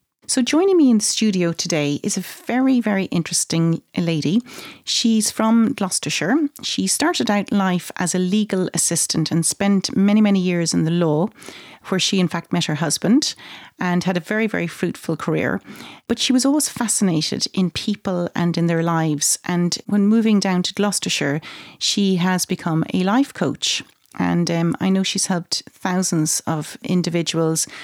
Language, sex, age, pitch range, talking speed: English, female, 40-59, 170-215 Hz, 170 wpm